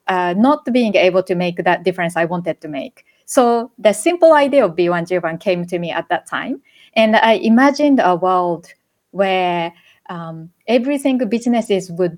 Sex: female